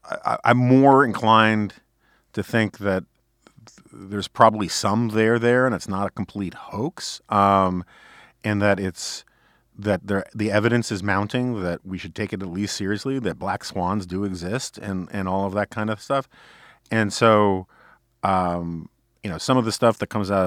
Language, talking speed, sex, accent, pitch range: English, 175 wpm, male, American, 95-115 Hz